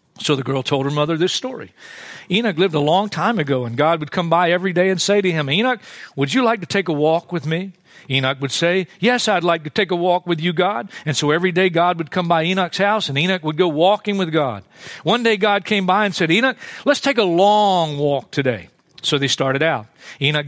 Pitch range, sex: 150-205 Hz, male